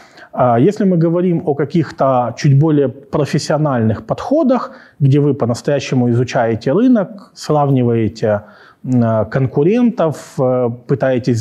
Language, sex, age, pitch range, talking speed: Ukrainian, male, 30-49, 120-160 Hz, 90 wpm